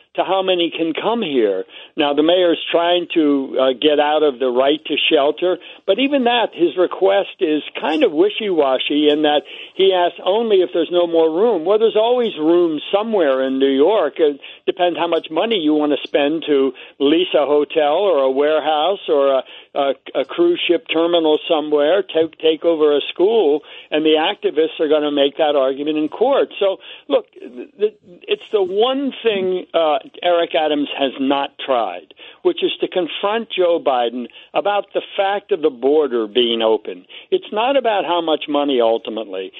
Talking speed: 190 wpm